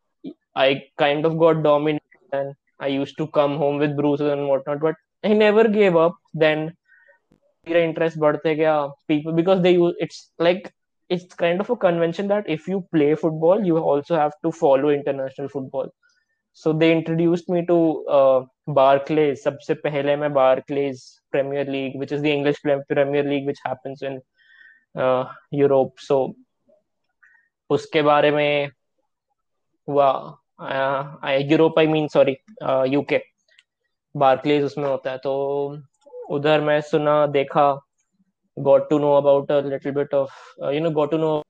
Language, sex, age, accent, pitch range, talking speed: Hindi, male, 20-39, native, 140-165 Hz, 125 wpm